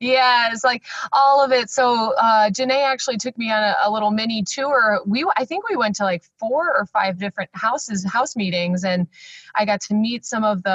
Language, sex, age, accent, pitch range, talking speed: English, female, 30-49, American, 175-215 Hz, 225 wpm